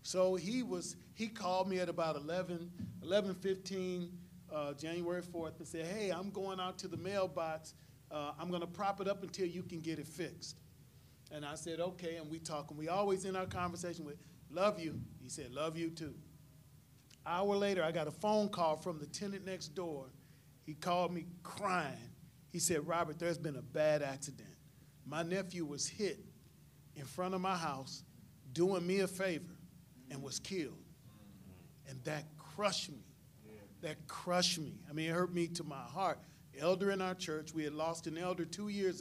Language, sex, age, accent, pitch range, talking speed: English, male, 40-59, American, 155-185 Hz, 190 wpm